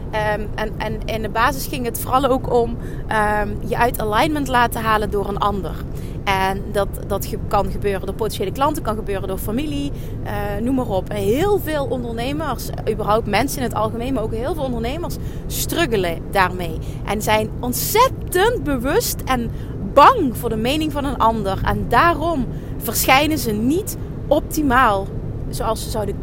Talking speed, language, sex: 165 wpm, Dutch, female